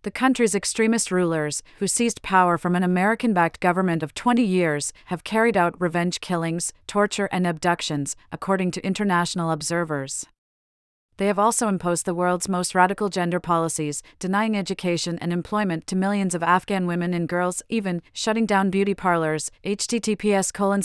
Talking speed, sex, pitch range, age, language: 155 wpm, female, 170-200 Hz, 30-49, English